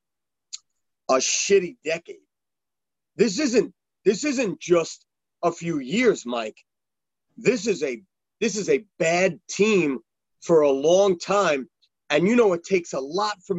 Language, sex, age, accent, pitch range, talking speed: English, male, 30-49, American, 180-245 Hz, 140 wpm